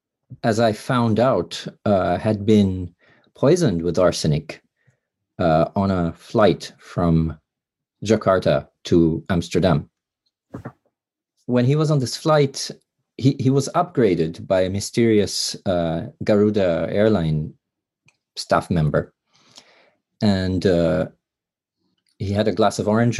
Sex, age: male, 40-59